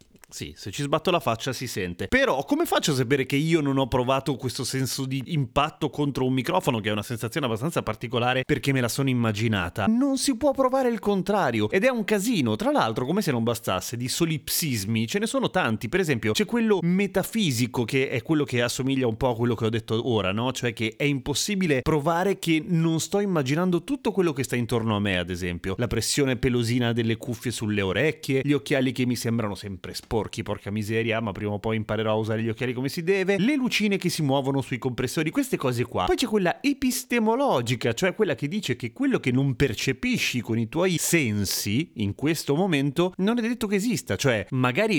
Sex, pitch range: male, 115-175 Hz